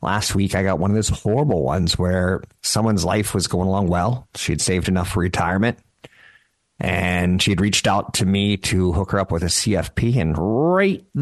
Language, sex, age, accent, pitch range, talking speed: English, male, 50-69, American, 85-105 Hz, 195 wpm